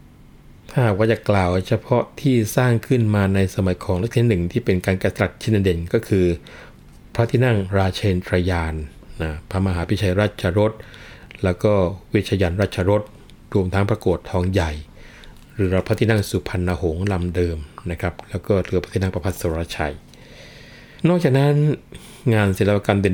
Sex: male